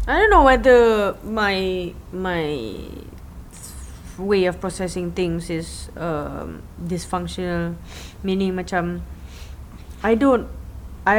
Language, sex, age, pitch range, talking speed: English, female, 20-39, 160-205 Hz, 95 wpm